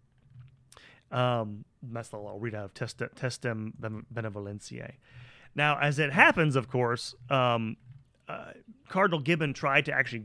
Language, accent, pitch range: English, American, 110-135 Hz